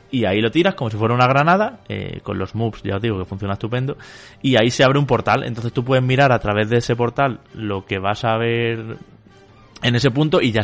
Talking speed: 250 wpm